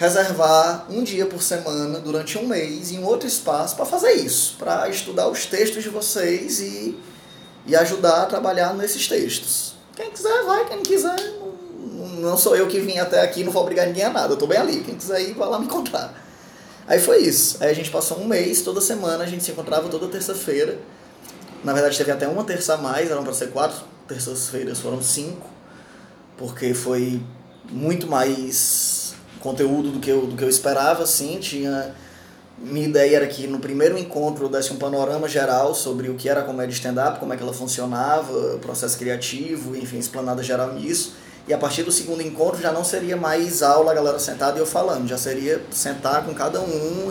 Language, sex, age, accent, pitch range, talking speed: Portuguese, male, 20-39, Brazilian, 135-180 Hz, 200 wpm